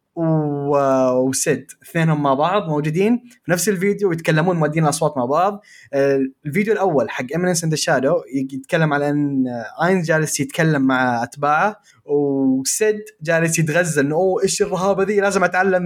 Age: 20-39